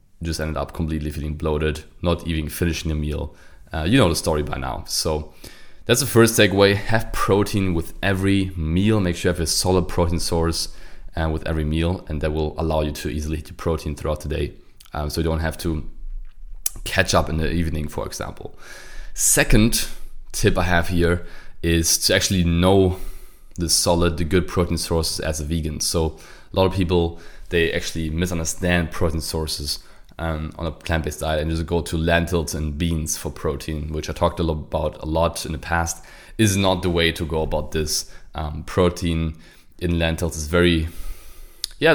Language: English